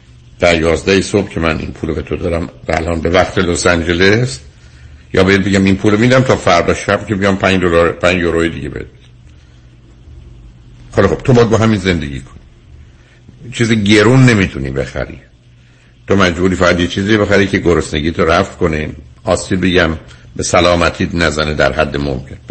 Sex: male